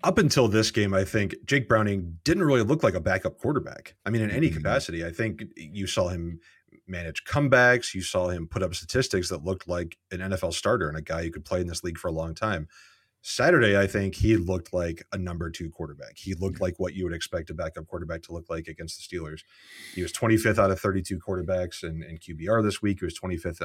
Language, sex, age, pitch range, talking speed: English, male, 30-49, 85-105 Hz, 235 wpm